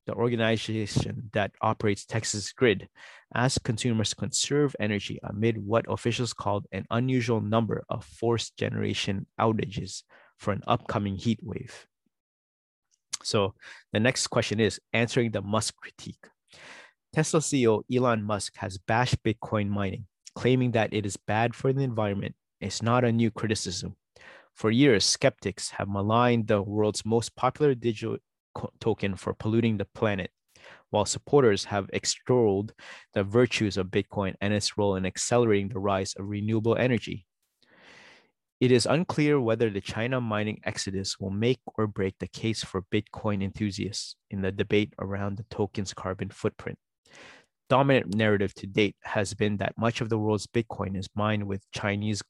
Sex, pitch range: male, 100-120 Hz